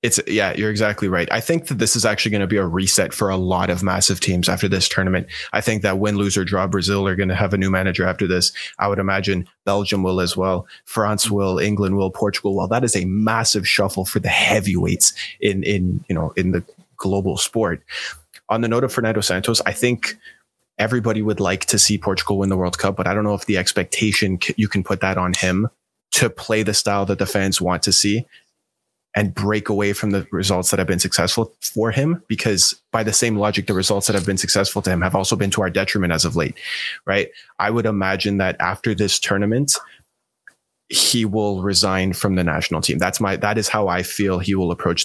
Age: 20-39